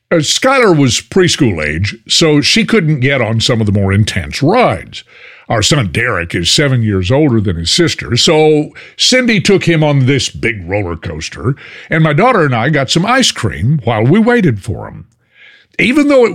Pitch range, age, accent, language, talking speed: 105-150 Hz, 50-69, American, English, 190 wpm